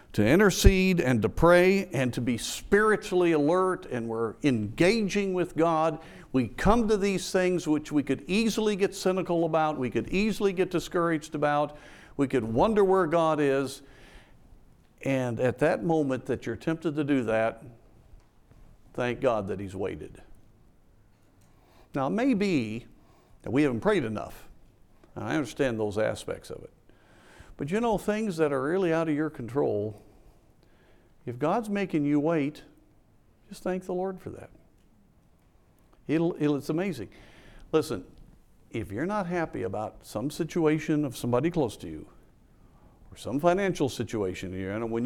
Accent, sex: American, male